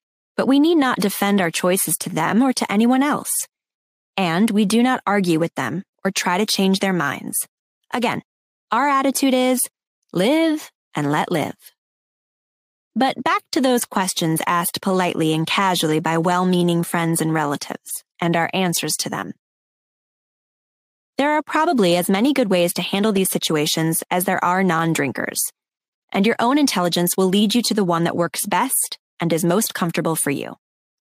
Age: 10-29